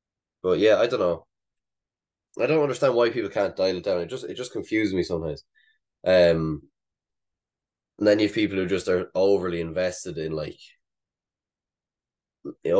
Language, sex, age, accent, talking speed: English, male, 10-29, Irish, 160 wpm